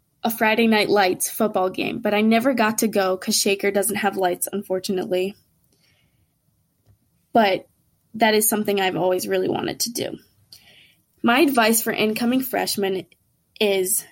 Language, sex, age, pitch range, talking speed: English, female, 20-39, 200-235 Hz, 145 wpm